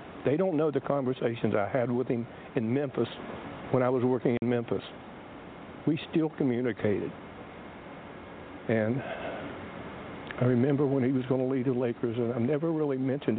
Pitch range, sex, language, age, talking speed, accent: 110-130 Hz, male, English, 60-79, 160 wpm, American